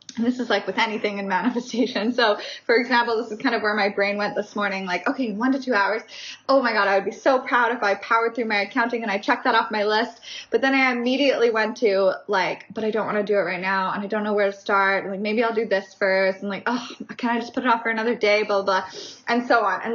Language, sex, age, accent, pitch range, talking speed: English, female, 20-39, American, 200-245 Hz, 290 wpm